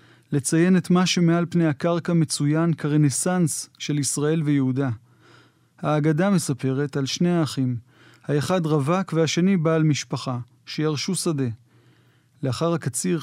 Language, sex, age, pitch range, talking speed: Hebrew, male, 30-49, 135-165 Hz, 115 wpm